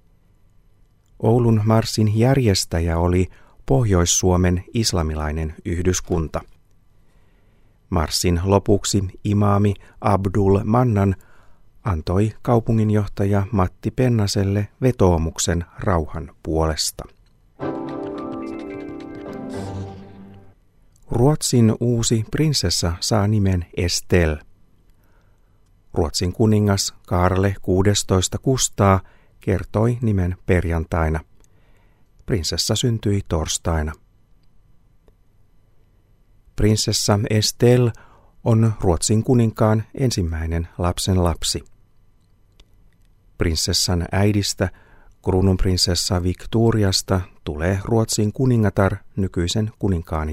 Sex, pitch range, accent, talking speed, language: male, 90-110 Hz, native, 65 wpm, Finnish